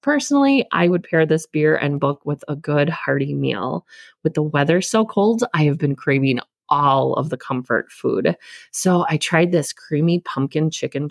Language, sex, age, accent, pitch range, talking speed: English, female, 30-49, American, 140-185 Hz, 185 wpm